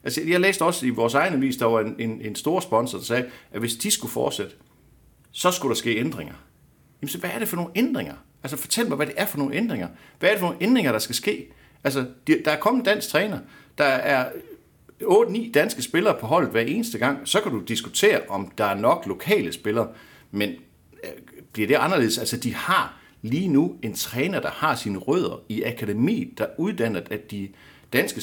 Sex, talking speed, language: male, 215 wpm, Danish